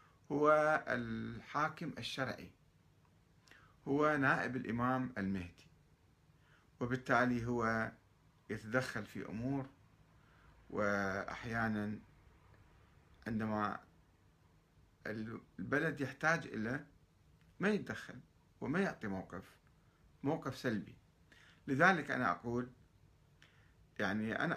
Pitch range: 95-135 Hz